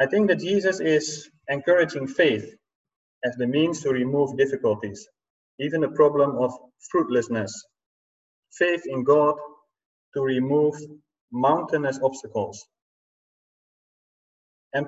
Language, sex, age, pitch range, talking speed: English, male, 30-49, 125-160 Hz, 105 wpm